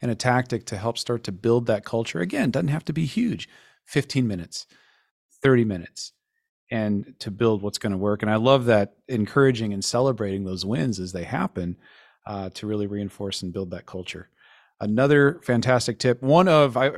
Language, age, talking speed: English, 40-59, 185 wpm